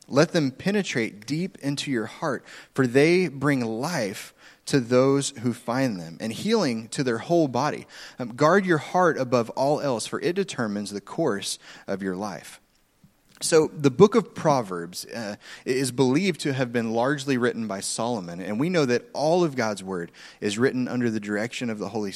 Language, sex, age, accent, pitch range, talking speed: English, male, 30-49, American, 120-160 Hz, 185 wpm